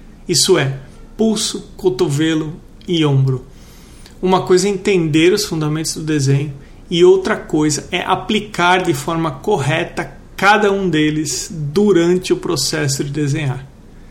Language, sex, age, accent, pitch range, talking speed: Portuguese, male, 40-59, Brazilian, 150-185 Hz, 130 wpm